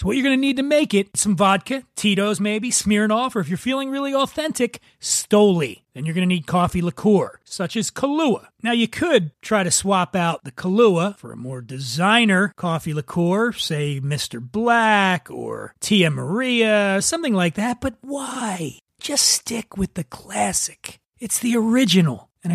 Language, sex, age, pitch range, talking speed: English, male, 40-59, 170-230 Hz, 175 wpm